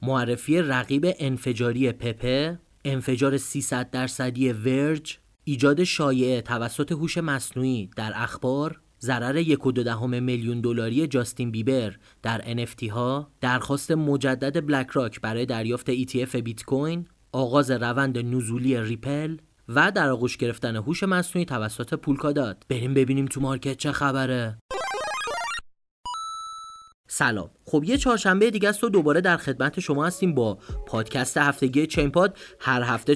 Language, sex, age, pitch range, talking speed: Persian, male, 30-49, 125-165 Hz, 130 wpm